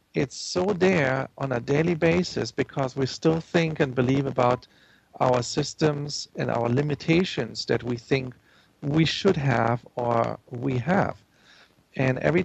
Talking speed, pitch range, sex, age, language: 145 wpm, 130-155 Hz, male, 40-59, English